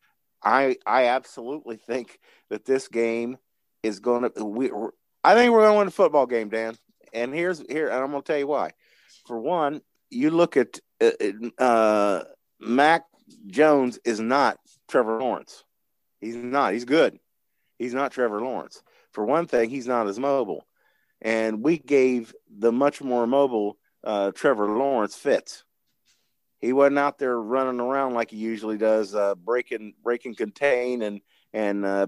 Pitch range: 105-135 Hz